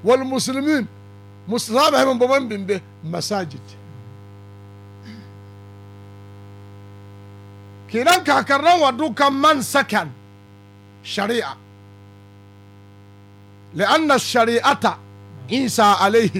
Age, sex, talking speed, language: 50-69, male, 50 wpm, Arabic